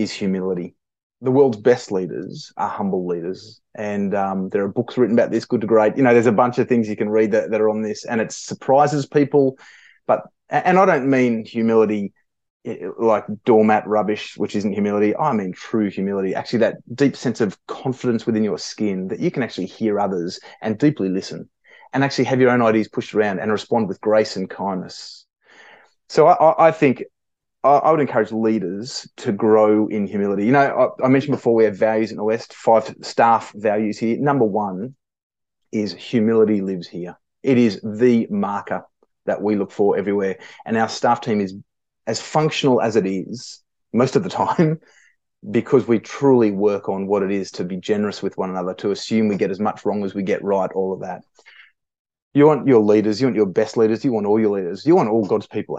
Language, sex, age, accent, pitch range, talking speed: English, male, 30-49, Australian, 100-125 Hz, 205 wpm